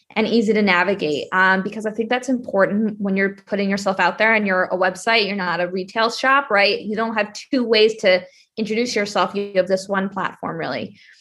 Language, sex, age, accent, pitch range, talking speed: English, female, 20-39, American, 200-230 Hz, 215 wpm